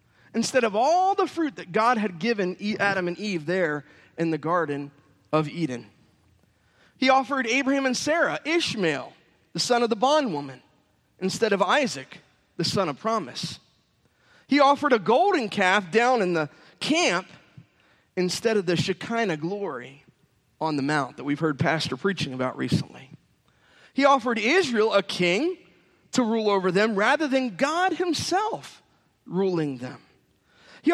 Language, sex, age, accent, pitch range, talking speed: English, male, 30-49, American, 155-245 Hz, 145 wpm